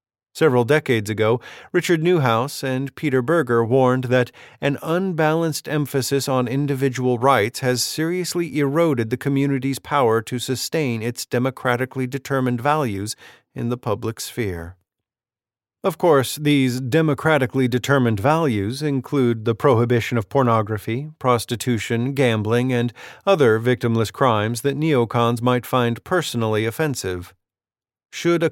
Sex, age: male, 40-59